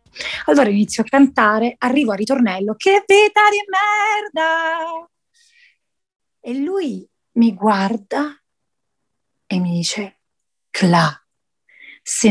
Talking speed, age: 95 wpm, 30-49